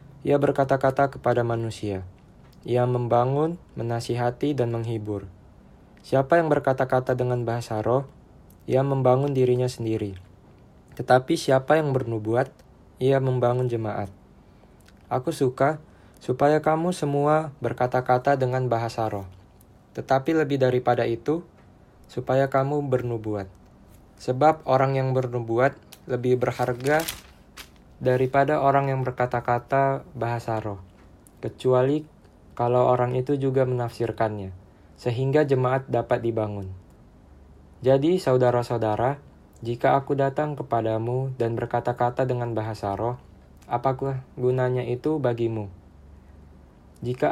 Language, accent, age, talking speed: Indonesian, native, 20-39, 100 wpm